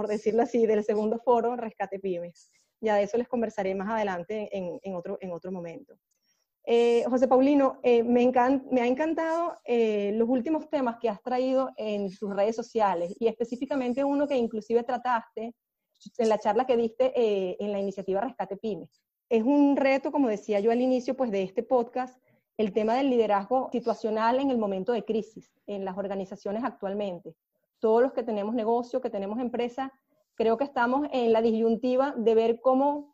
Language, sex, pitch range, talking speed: Spanish, female, 215-260 Hz, 185 wpm